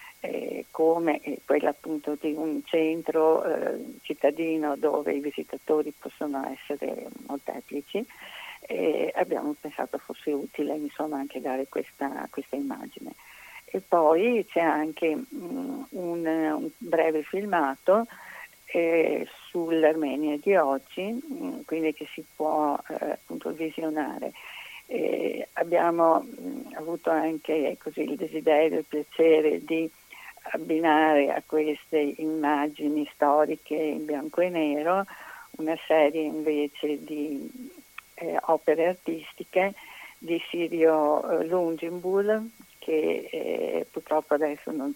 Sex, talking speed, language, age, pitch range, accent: female, 105 wpm, Italian, 50-69, 150-180 Hz, native